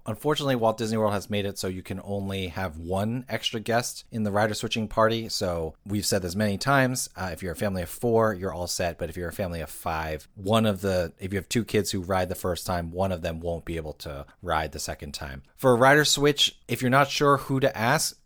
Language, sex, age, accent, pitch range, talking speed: English, male, 30-49, American, 95-120 Hz, 255 wpm